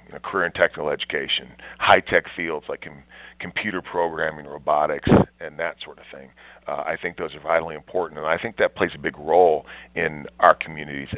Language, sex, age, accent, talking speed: English, male, 40-59, American, 195 wpm